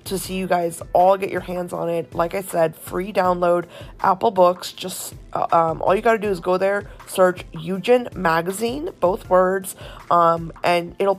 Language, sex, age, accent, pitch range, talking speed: English, female, 20-39, American, 165-195 Hz, 195 wpm